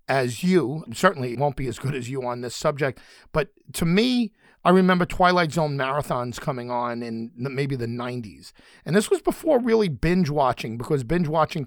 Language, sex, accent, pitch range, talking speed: English, male, American, 125-175 Hz, 185 wpm